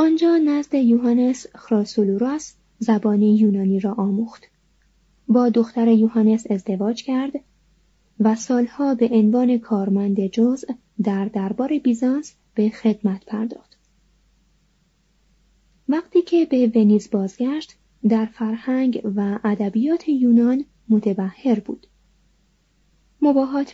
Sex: female